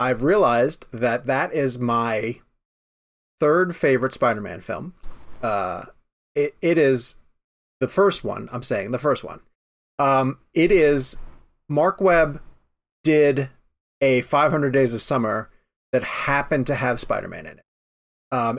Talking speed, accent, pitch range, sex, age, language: 130 wpm, American, 125-150 Hz, male, 30-49, English